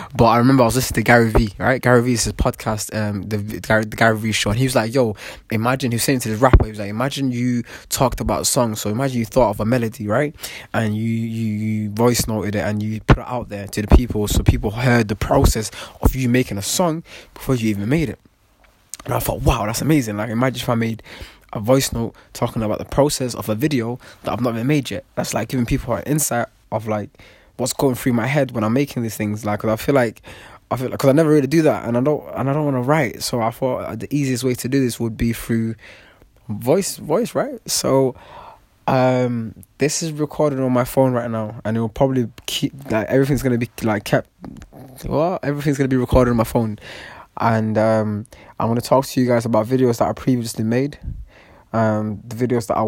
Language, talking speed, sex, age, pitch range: English, 240 wpm, male, 20-39, 110-130 Hz